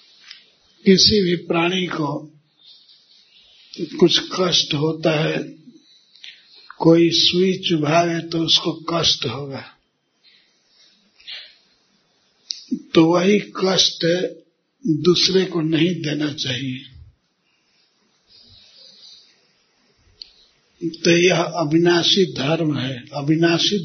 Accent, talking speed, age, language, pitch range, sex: native, 75 wpm, 50-69, Hindi, 155-175 Hz, male